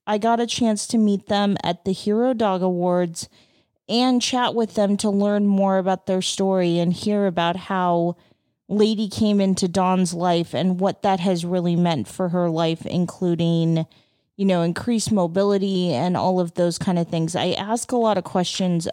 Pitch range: 170-200 Hz